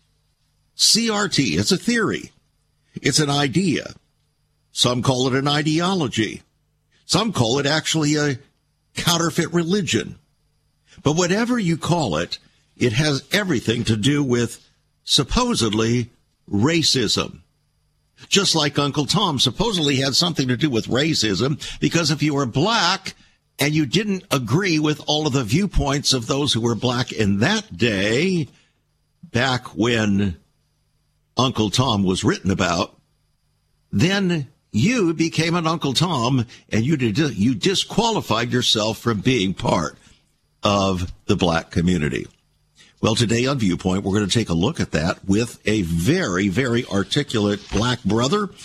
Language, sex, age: English, male, 50-69